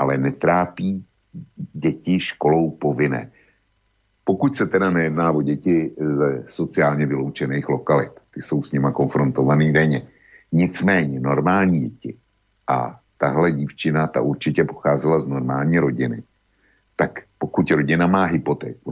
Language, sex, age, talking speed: Slovak, male, 60-79, 120 wpm